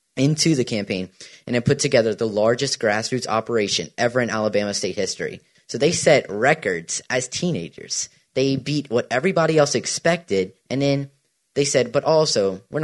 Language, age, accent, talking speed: English, 20-39, American, 165 wpm